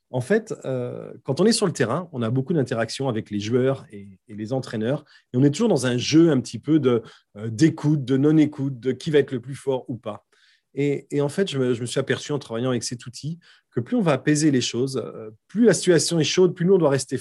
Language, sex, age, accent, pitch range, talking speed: French, male, 30-49, French, 125-155 Hz, 270 wpm